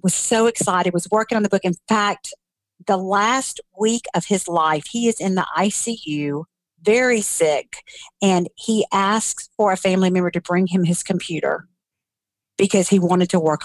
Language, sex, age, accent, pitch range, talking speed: English, female, 50-69, American, 170-205 Hz, 175 wpm